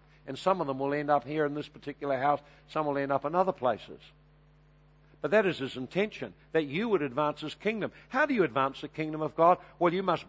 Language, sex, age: English, male, 60-79